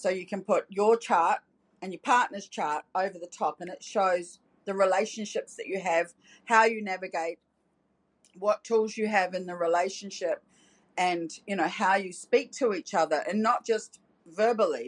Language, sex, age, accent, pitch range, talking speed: English, female, 40-59, Australian, 180-225 Hz, 180 wpm